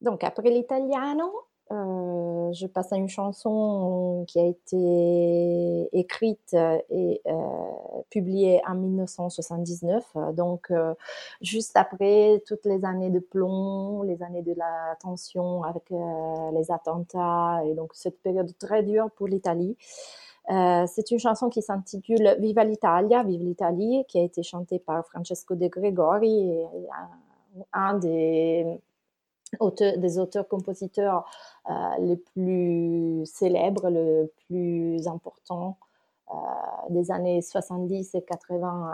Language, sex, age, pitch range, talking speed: French, female, 30-49, 170-205 Hz, 120 wpm